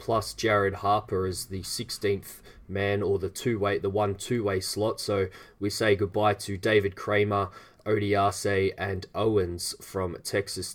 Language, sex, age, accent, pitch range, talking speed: English, male, 20-39, Australian, 100-115 Hz, 150 wpm